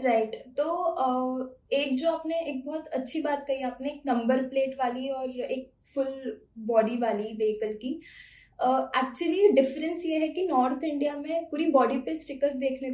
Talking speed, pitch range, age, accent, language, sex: 160 wpm, 250-300 Hz, 10-29, Indian, English, female